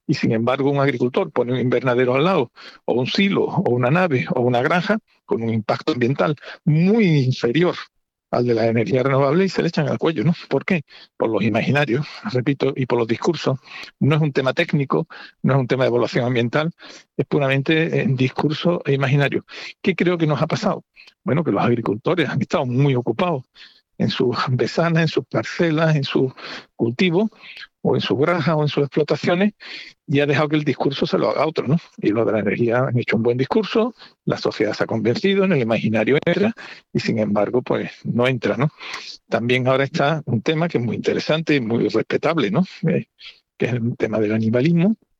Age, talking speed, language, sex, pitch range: 50-69, 205 wpm, Spanish, male, 125-170 Hz